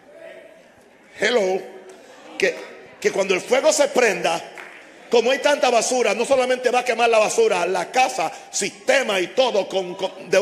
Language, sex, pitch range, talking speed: Spanish, male, 205-320 Hz, 155 wpm